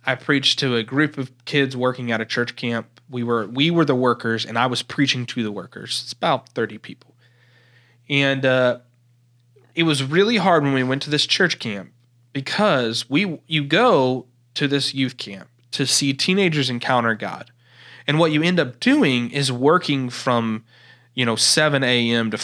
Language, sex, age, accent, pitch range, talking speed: English, male, 30-49, American, 120-145 Hz, 185 wpm